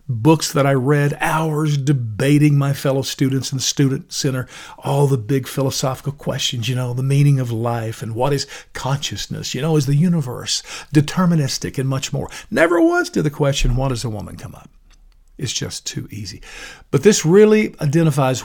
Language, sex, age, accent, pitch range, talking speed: English, male, 50-69, American, 125-155 Hz, 180 wpm